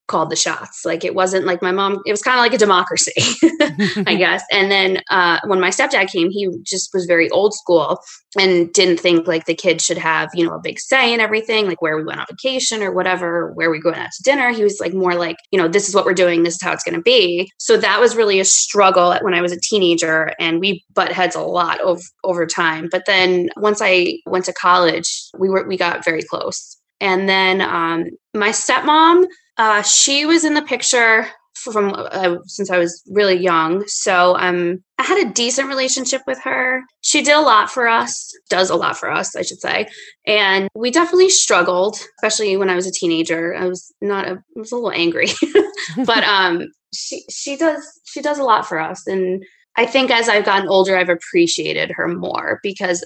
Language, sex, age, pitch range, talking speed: English, female, 20-39, 180-235 Hz, 220 wpm